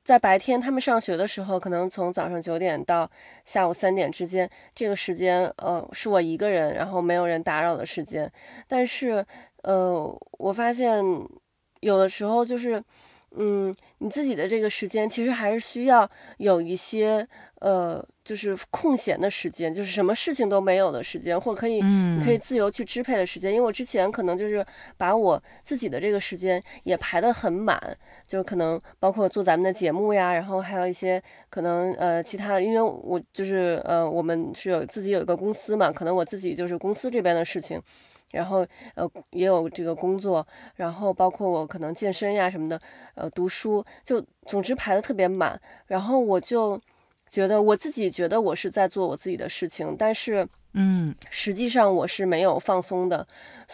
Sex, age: female, 20-39